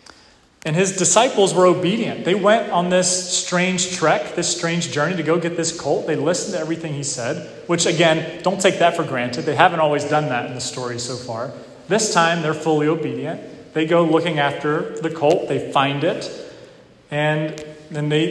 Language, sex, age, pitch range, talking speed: English, male, 30-49, 145-180 Hz, 195 wpm